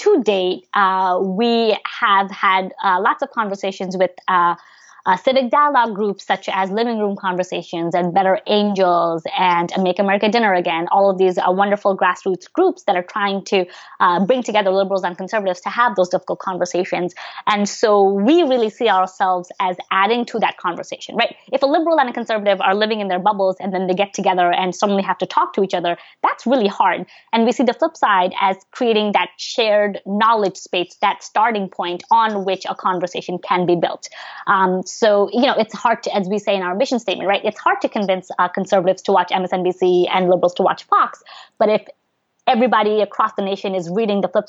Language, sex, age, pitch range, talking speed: English, female, 20-39, 185-220 Hz, 205 wpm